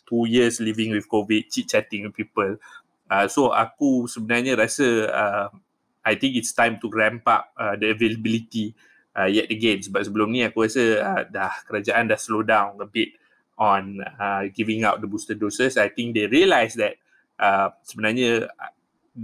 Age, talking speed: 20-39, 170 wpm